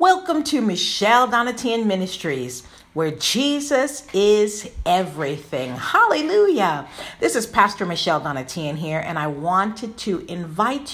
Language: English